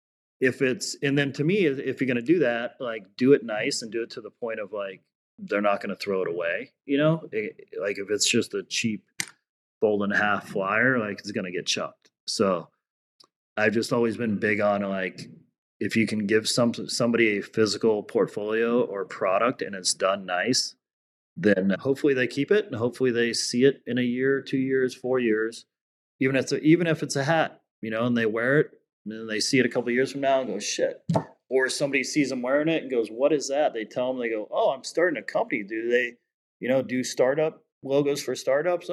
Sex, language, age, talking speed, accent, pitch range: male, English, 30-49, 230 wpm, American, 110-140 Hz